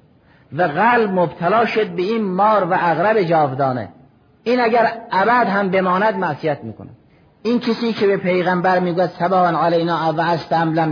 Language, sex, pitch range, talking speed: Persian, male, 150-190 Hz, 150 wpm